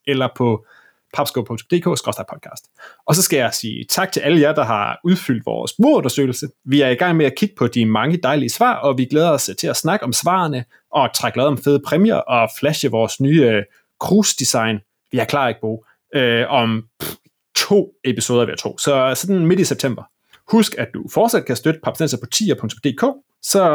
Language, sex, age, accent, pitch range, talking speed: Danish, male, 30-49, native, 120-170 Hz, 190 wpm